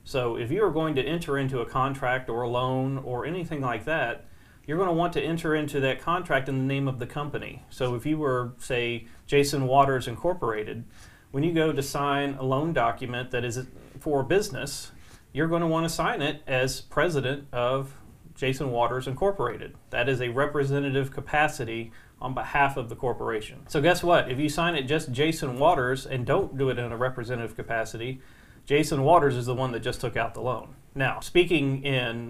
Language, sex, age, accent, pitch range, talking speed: English, male, 40-59, American, 120-145 Hz, 195 wpm